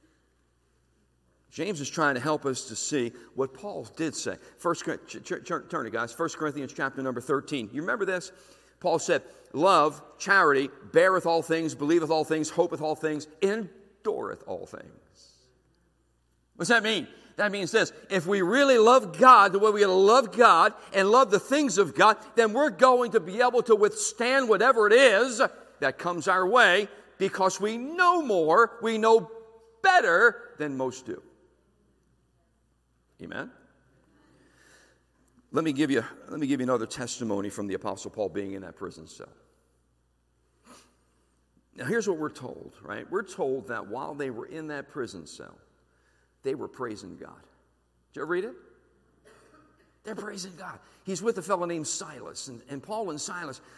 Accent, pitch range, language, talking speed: American, 130-220 Hz, English, 160 wpm